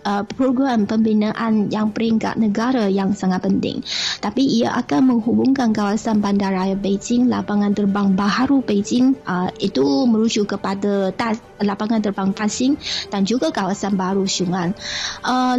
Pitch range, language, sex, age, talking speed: 200-240 Hz, Malay, female, 20-39, 125 wpm